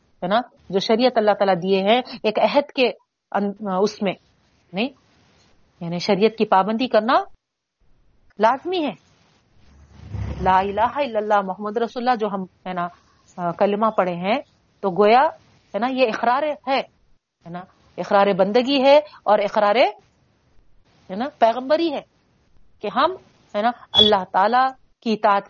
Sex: female